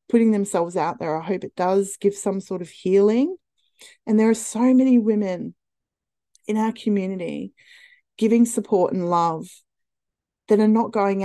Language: English